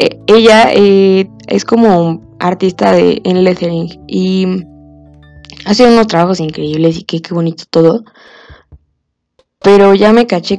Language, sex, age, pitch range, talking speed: Spanish, female, 20-39, 165-210 Hz, 125 wpm